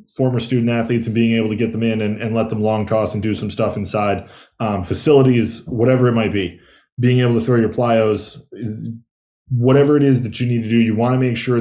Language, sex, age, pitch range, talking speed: English, male, 20-39, 110-125 Hz, 235 wpm